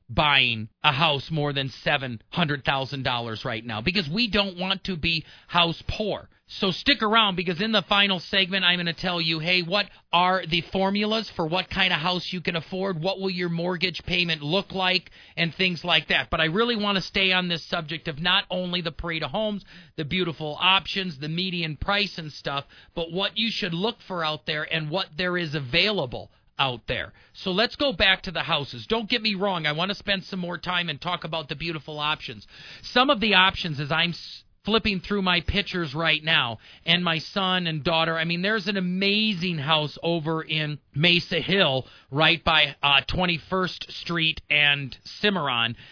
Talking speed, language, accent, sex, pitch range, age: 200 wpm, English, American, male, 155-190 Hz, 40-59